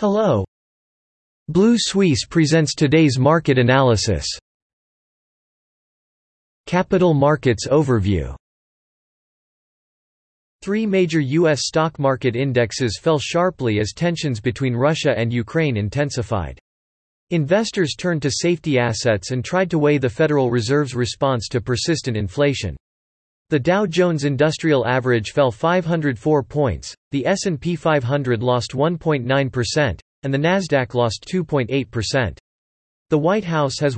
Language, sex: English, male